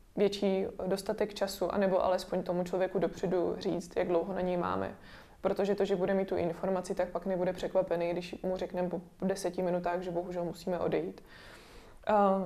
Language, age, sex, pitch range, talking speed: Czech, 20-39, female, 180-195 Hz, 175 wpm